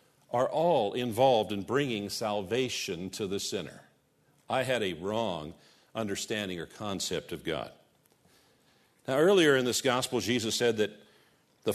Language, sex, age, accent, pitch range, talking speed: English, male, 50-69, American, 115-145 Hz, 140 wpm